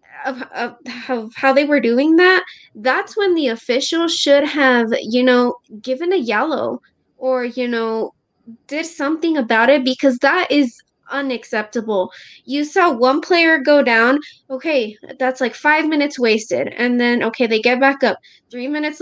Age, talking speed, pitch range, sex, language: 20-39, 160 wpm, 230-280 Hz, female, English